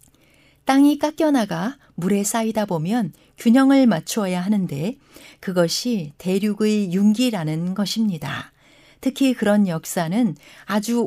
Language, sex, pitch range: Korean, female, 185-255 Hz